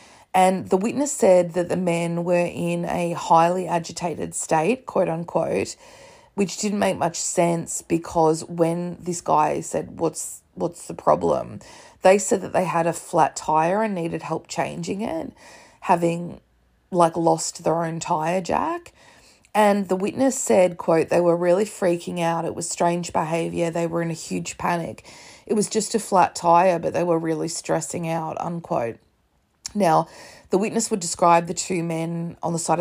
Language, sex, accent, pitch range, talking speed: English, female, Australian, 165-180 Hz, 170 wpm